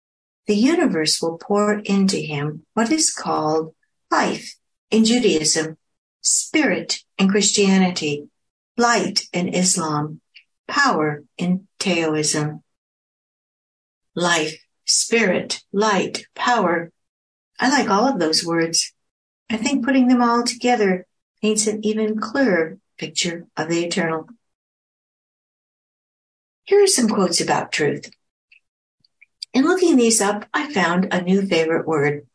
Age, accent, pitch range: 60-79, American, 165-230 Hz